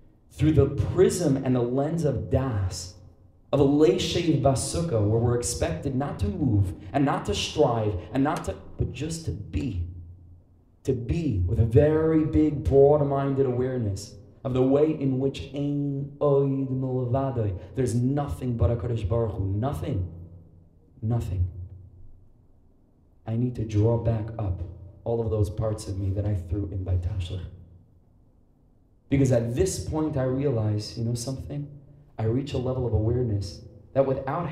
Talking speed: 150 wpm